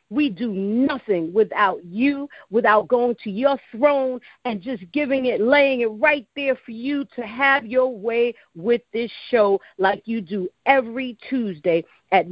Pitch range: 205-280 Hz